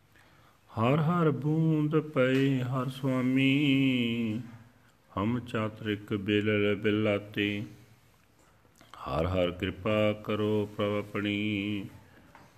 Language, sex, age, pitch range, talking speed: Punjabi, male, 40-59, 105-120 Hz, 75 wpm